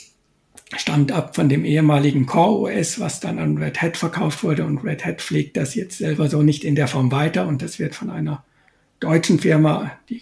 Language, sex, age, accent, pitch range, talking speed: German, male, 60-79, German, 140-160 Hz, 200 wpm